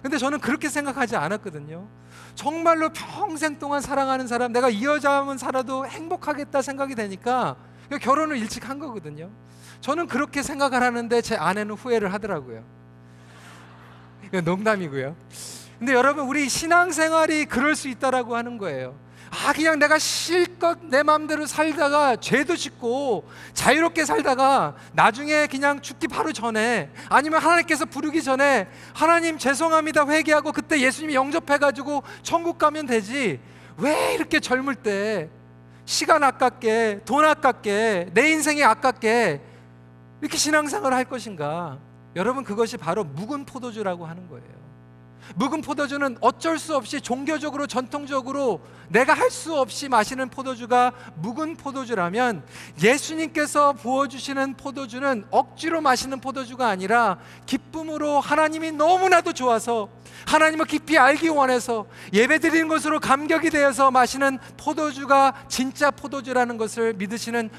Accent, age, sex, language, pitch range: native, 40-59, male, Korean, 215-295 Hz